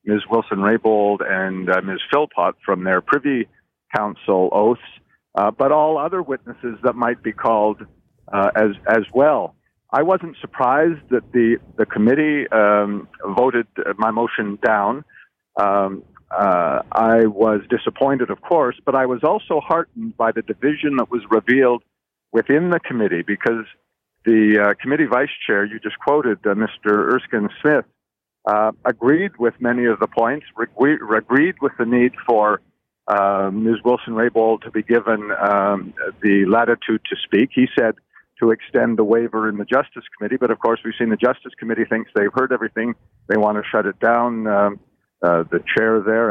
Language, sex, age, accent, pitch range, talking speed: English, male, 50-69, American, 105-120 Hz, 165 wpm